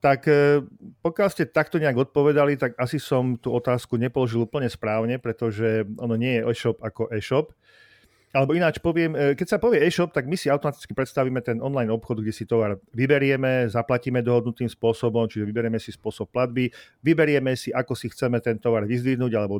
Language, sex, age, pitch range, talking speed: Slovak, male, 40-59, 115-145 Hz, 175 wpm